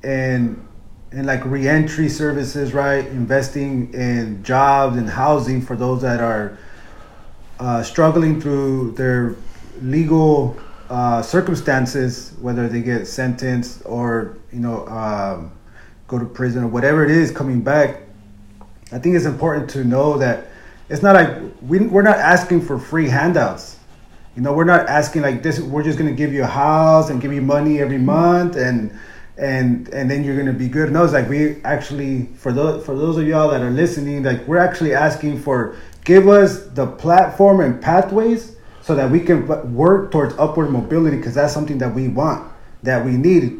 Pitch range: 125-155 Hz